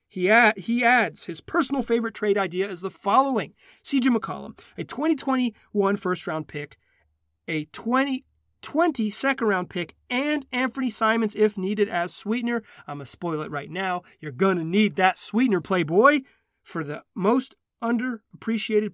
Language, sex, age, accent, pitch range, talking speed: English, male, 30-49, American, 160-220 Hz, 150 wpm